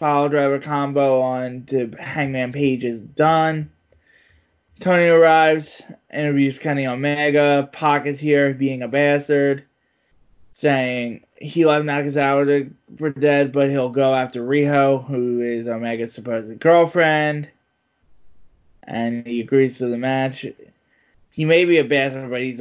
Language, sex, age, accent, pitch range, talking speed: English, male, 20-39, American, 120-145 Hz, 130 wpm